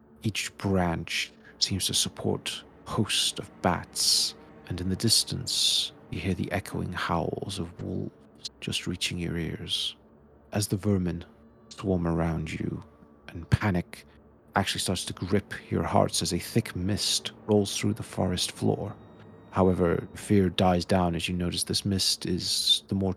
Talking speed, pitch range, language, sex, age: 155 wpm, 80-95 Hz, English, male, 40-59